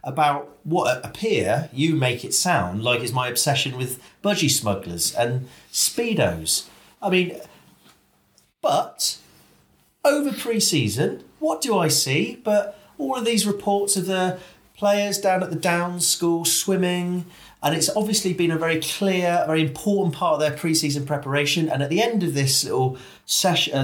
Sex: male